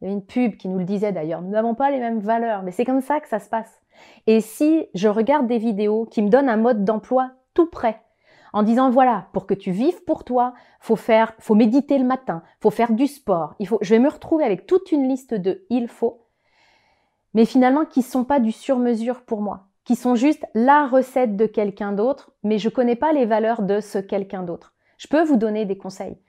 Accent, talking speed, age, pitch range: French, 230 wpm, 30-49, 205-255 Hz